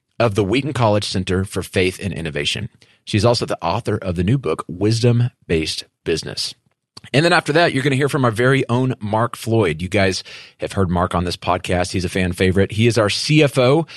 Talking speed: 210 wpm